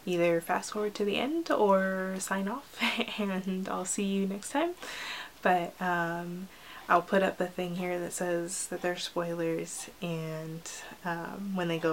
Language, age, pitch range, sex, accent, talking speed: English, 20-39, 170-205 Hz, female, American, 170 wpm